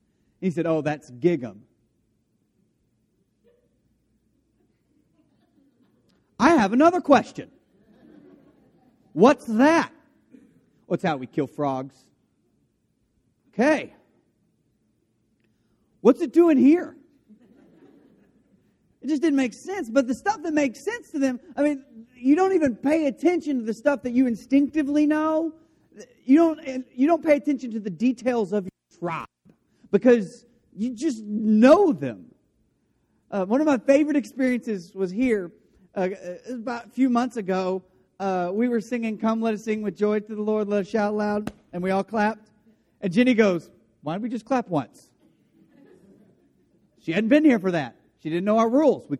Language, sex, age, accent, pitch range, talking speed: English, male, 40-59, American, 195-280 Hz, 145 wpm